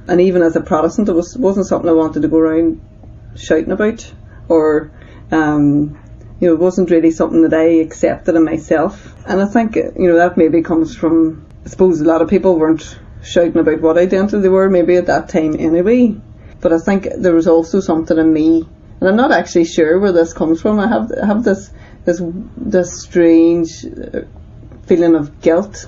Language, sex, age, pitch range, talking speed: English, female, 30-49, 160-180 Hz, 195 wpm